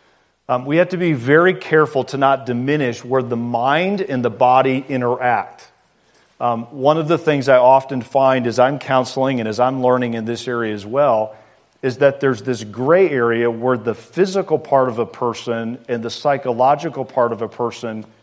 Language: English